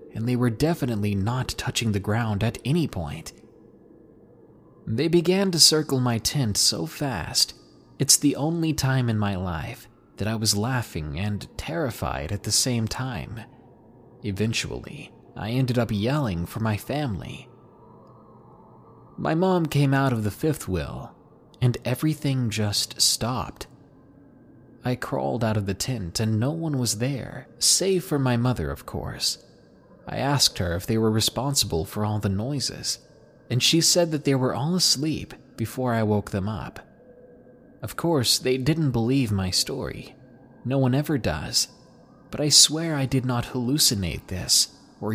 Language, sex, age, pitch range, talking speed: English, male, 30-49, 105-140 Hz, 155 wpm